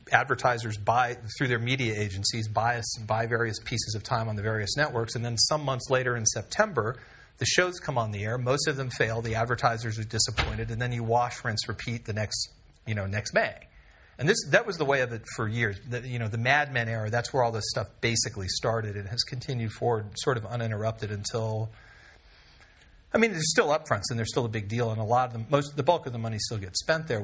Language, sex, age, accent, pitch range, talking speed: English, male, 40-59, American, 110-130 Hz, 235 wpm